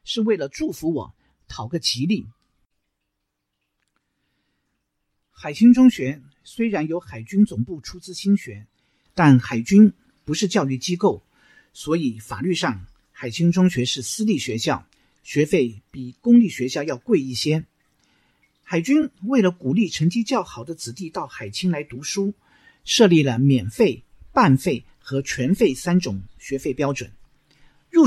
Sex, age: male, 50-69